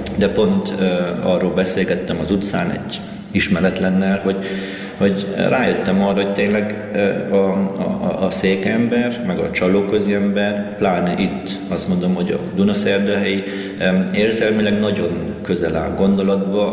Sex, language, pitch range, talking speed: male, Slovak, 95-105 Hz, 135 wpm